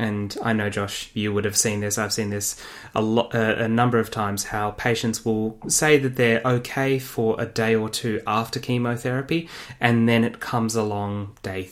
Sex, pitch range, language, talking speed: male, 105-125 Hz, English, 195 wpm